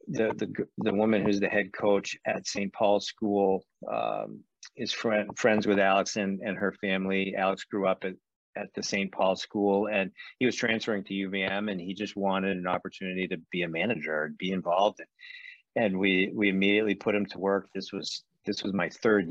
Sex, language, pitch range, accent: male, English, 95-105 Hz, American